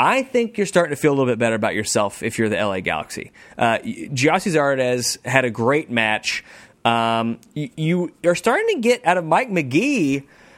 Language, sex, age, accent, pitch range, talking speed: English, male, 30-49, American, 125-195 Hz, 195 wpm